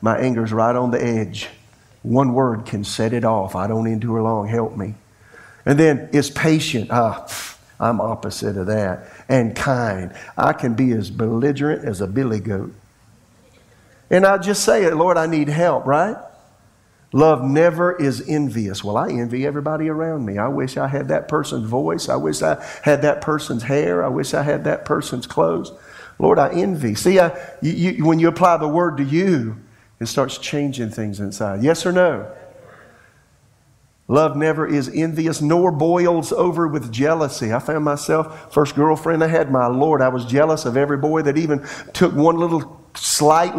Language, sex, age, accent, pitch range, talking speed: English, male, 50-69, American, 115-160 Hz, 175 wpm